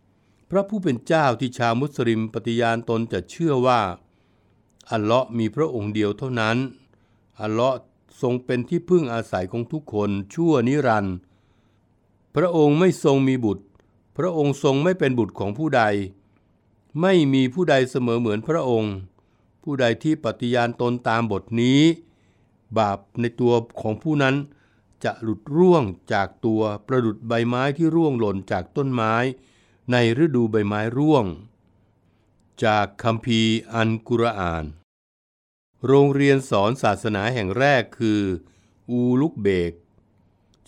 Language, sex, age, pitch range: Thai, male, 60-79, 105-135 Hz